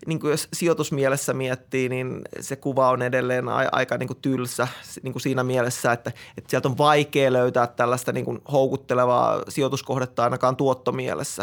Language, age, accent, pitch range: Finnish, 20-39, native, 125-135 Hz